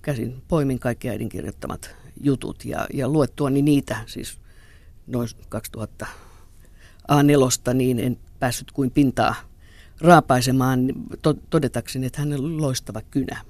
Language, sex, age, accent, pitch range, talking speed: Finnish, female, 50-69, native, 115-145 Hz, 120 wpm